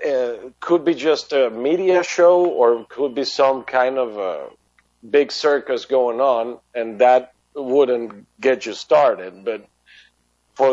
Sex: male